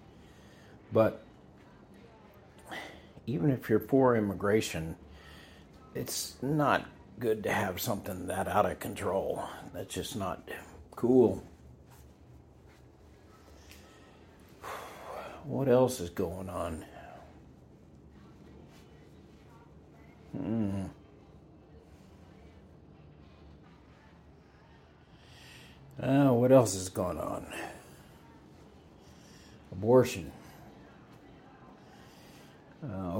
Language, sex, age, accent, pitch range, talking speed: English, male, 60-79, American, 75-105 Hz, 60 wpm